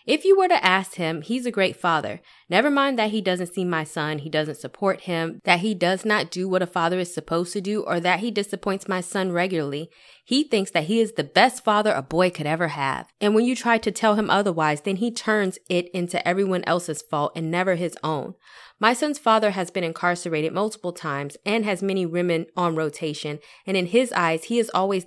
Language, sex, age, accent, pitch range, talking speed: English, female, 20-39, American, 165-220 Hz, 225 wpm